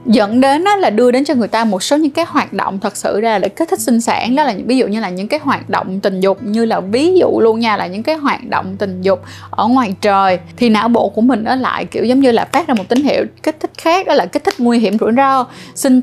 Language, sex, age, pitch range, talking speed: Vietnamese, female, 20-39, 210-265 Hz, 290 wpm